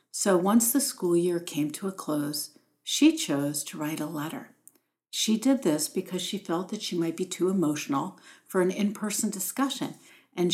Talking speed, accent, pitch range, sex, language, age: 180 wpm, American, 165-230 Hz, female, English, 60-79